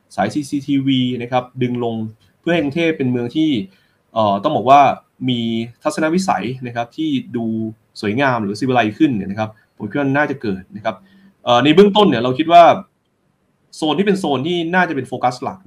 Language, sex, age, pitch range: Thai, male, 20-39, 110-140 Hz